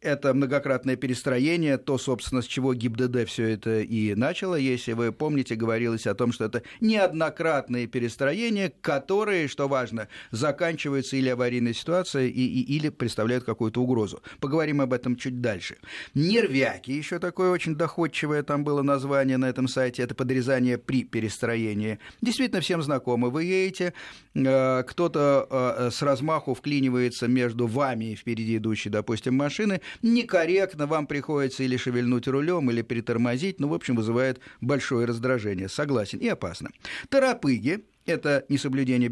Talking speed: 135 wpm